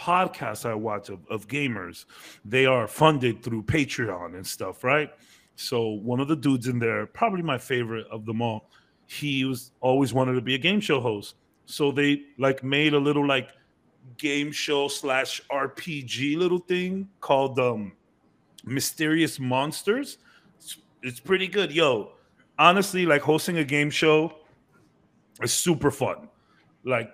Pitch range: 125-155 Hz